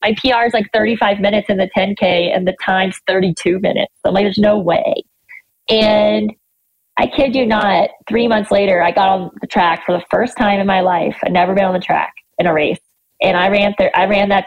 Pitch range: 190-225 Hz